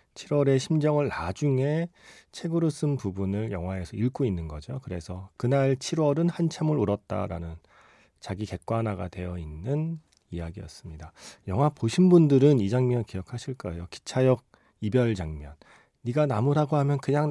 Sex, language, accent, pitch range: male, Korean, native, 95-145 Hz